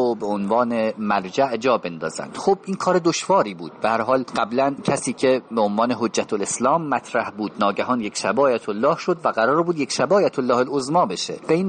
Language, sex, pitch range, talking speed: English, male, 110-155 Hz, 195 wpm